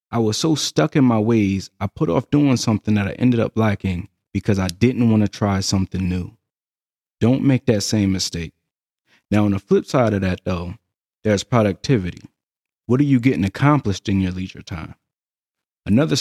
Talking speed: 185 wpm